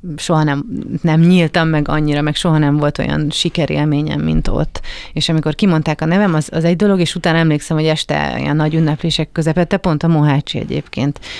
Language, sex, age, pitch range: English, female, 30-49, 150-170 Hz